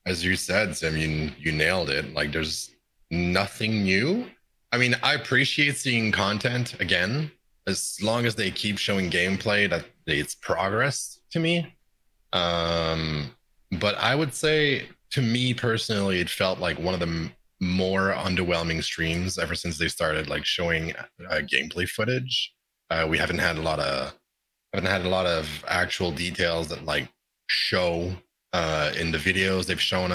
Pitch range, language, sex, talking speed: 80-105 Hz, English, male, 165 wpm